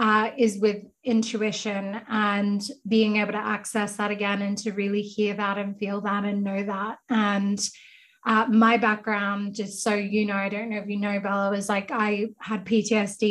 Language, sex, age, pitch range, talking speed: English, female, 20-39, 205-225 Hz, 190 wpm